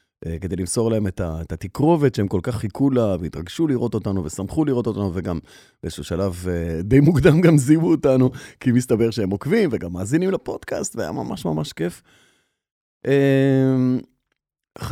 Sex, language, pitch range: male, Hebrew, 95-150 Hz